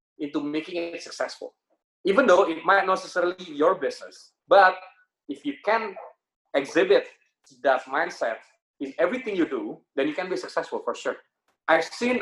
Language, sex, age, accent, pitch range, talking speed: English, male, 30-49, Indonesian, 145-240 Hz, 160 wpm